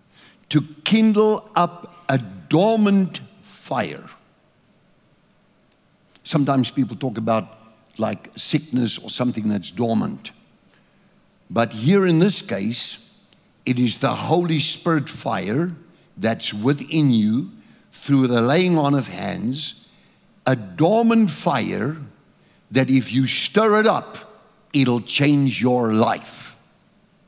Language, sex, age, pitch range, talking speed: English, male, 60-79, 120-175 Hz, 110 wpm